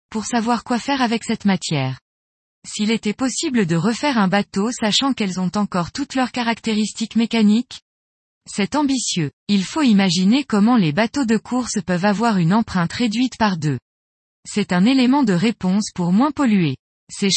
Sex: female